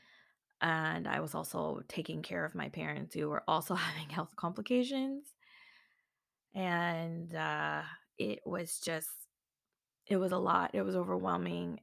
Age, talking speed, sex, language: 20-39, 135 wpm, female, English